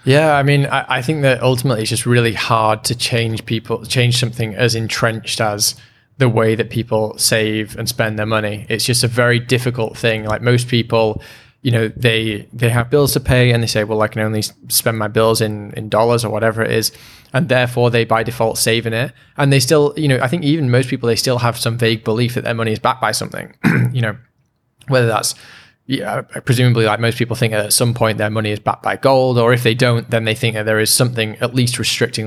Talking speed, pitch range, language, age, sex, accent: 235 wpm, 110-125 Hz, English, 20-39, male, British